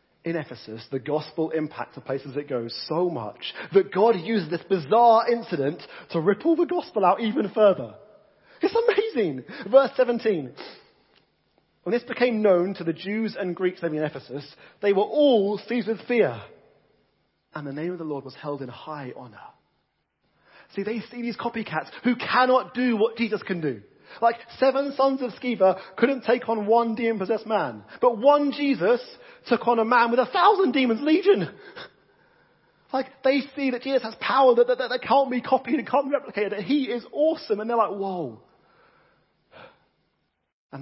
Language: English